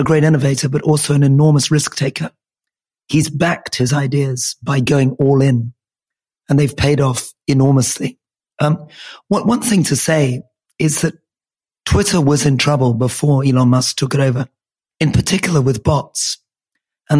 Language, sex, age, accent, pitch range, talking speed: English, male, 40-59, British, 135-155 Hz, 155 wpm